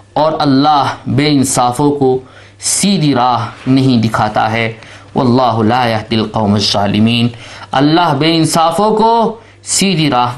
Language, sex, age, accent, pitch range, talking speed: English, male, 50-69, Indian, 110-160 Hz, 120 wpm